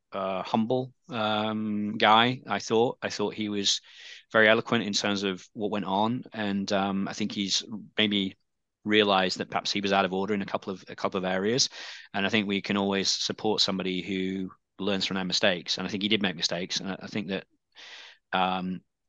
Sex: male